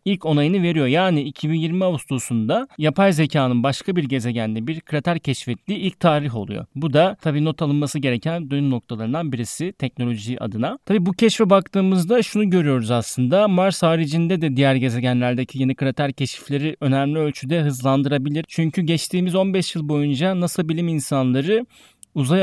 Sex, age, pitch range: male, 30-49, 135-175 Hz